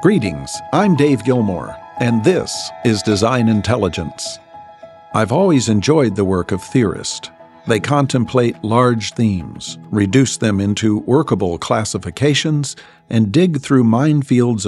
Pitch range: 100-130 Hz